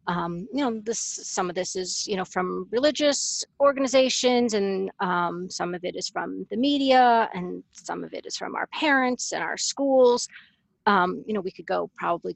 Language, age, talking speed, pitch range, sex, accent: English, 40-59, 195 wpm, 190-255 Hz, female, American